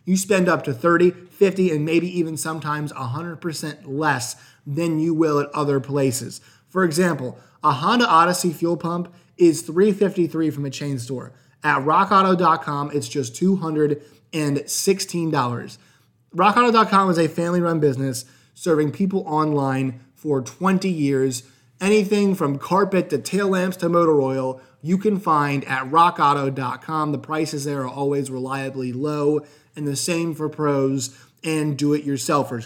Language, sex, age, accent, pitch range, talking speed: English, male, 20-39, American, 135-175 Hz, 140 wpm